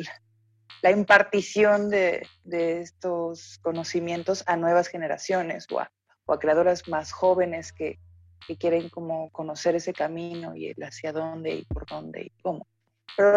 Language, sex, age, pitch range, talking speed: Spanish, female, 30-49, 150-195 Hz, 150 wpm